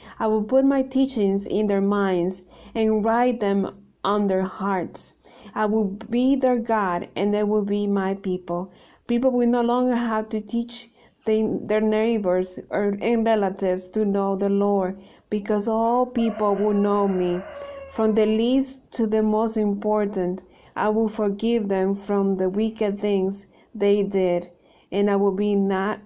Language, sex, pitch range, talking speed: English, female, 195-225 Hz, 155 wpm